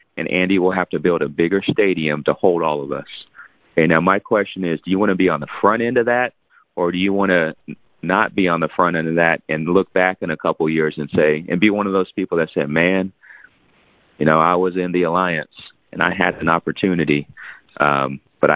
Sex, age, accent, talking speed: male, 30-49, American, 245 wpm